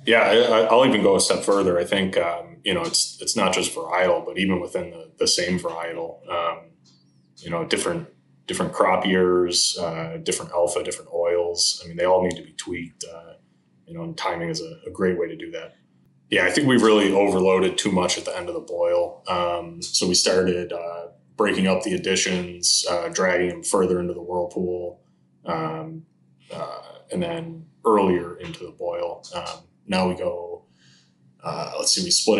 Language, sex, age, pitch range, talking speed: English, male, 20-39, 85-105 Hz, 195 wpm